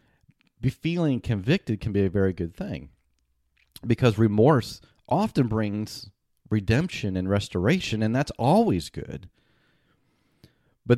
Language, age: English, 40-59